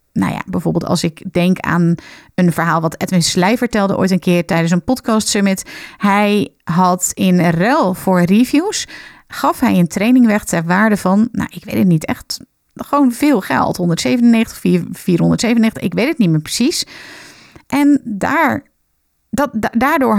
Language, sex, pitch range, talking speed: Dutch, female, 180-235 Hz, 160 wpm